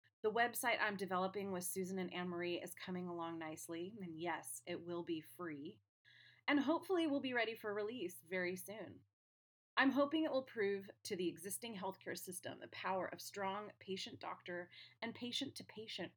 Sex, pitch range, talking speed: female, 175-265 Hz, 165 wpm